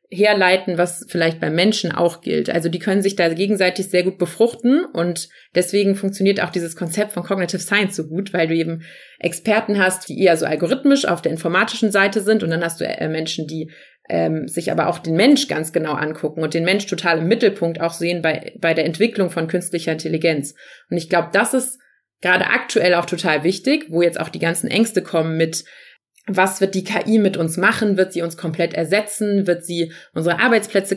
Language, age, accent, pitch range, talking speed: German, 30-49, German, 170-210 Hz, 205 wpm